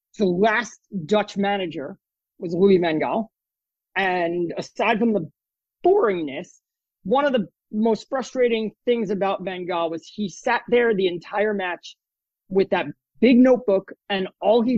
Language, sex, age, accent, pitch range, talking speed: English, male, 30-49, American, 190-235 Hz, 145 wpm